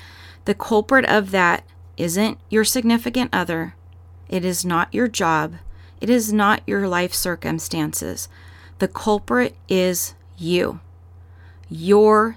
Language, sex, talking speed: English, female, 115 wpm